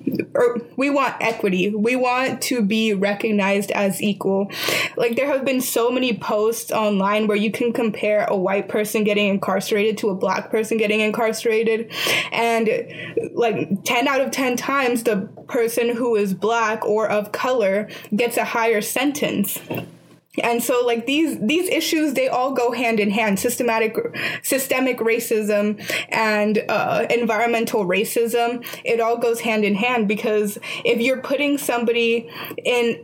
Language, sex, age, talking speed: English, female, 20-39, 150 wpm